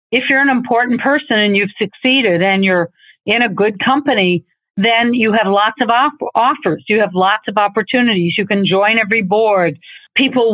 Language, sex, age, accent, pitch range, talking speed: English, female, 50-69, American, 185-225 Hz, 180 wpm